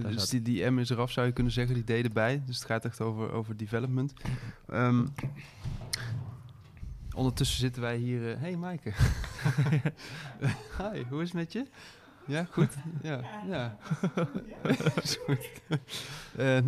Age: 20-39